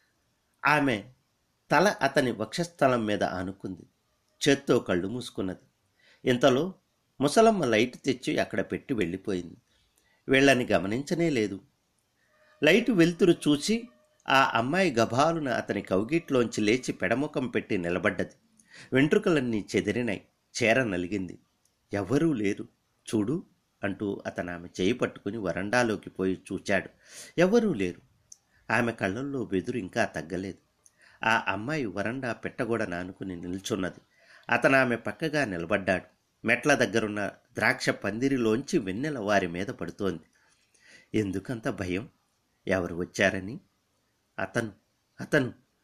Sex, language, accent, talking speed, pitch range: male, Telugu, native, 100 wpm, 95-130 Hz